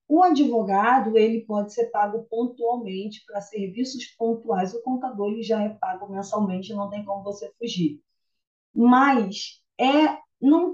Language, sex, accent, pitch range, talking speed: Portuguese, female, Brazilian, 190-255 Hz, 125 wpm